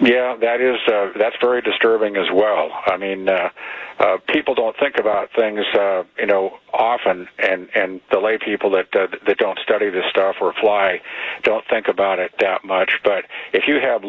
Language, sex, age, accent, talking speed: English, male, 50-69, American, 195 wpm